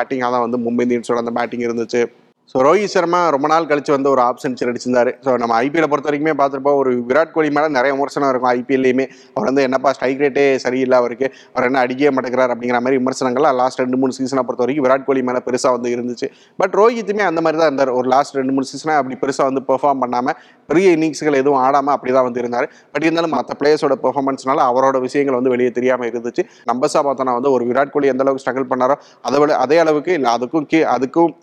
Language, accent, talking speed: Tamil, native, 200 wpm